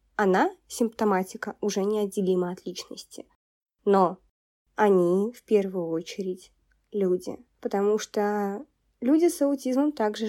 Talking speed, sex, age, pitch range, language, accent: 105 wpm, female, 20-39, 190-225 Hz, Russian, native